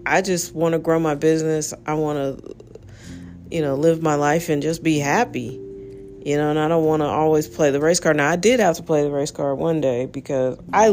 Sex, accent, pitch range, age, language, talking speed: female, American, 140-175 Hz, 40-59, English, 240 wpm